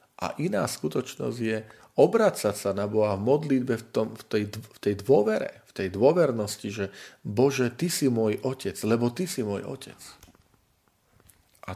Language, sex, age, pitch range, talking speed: Slovak, male, 40-59, 100-130 Hz, 150 wpm